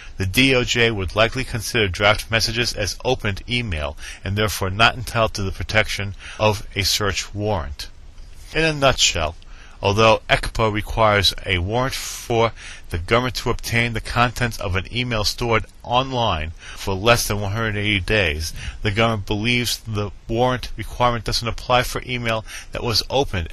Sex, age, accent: male, 40-59, American